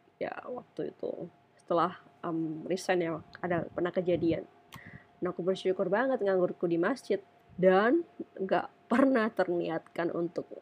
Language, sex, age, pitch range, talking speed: Indonesian, female, 20-39, 175-210 Hz, 125 wpm